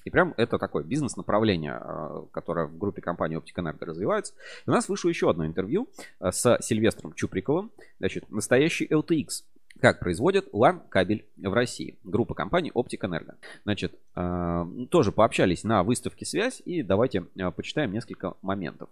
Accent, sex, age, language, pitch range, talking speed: native, male, 30-49, Russian, 95-140 Hz, 145 wpm